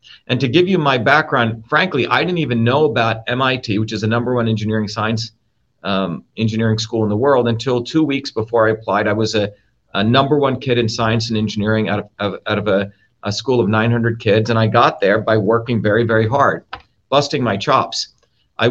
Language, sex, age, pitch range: English, male, 40-59, 110-120 Hz